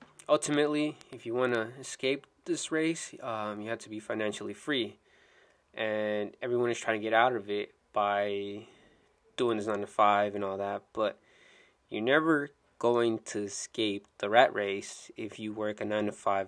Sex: male